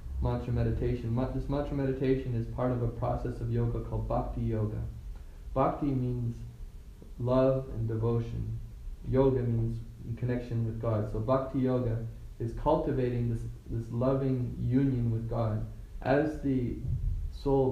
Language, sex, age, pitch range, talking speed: English, male, 20-39, 105-125 Hz, 130 wpm